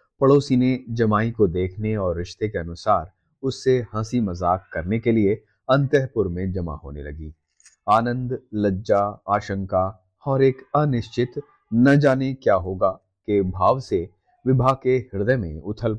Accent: native